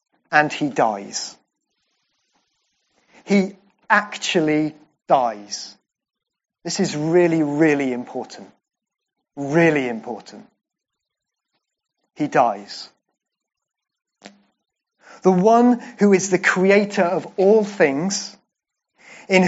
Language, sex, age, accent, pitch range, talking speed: English, male, 30-49, British, 165-210 Hz, 75 wpm